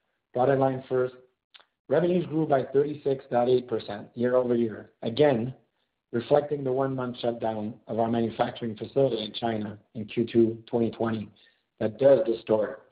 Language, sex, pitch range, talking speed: English, male, 115-135 Hz, 120 wpm